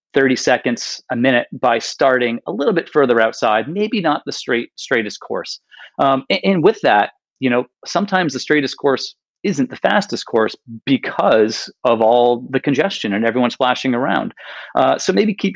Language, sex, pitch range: English, male, 115-135 Hz